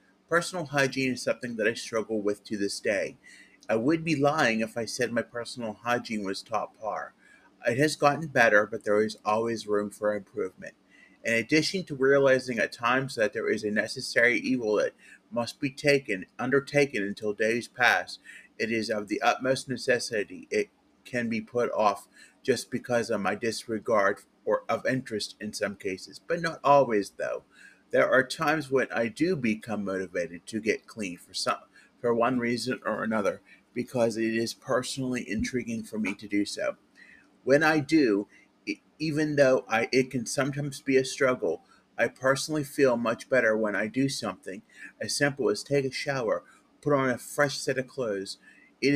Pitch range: 110-140 Hz